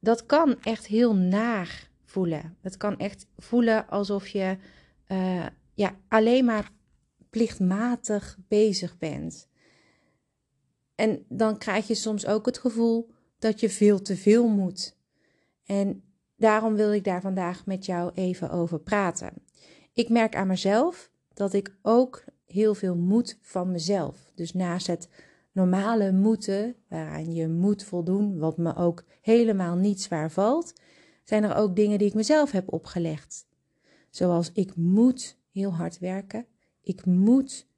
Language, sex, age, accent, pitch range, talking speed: Dutch, female, 40-59, Dutch, 180-215 Hz, 140 wpm